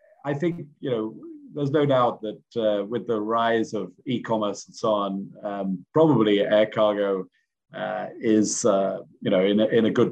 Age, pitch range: 40-59, 100-125 Hz